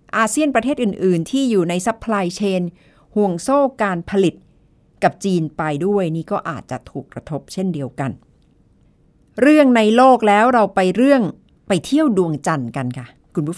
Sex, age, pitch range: female, 60-79, 160-225 Hz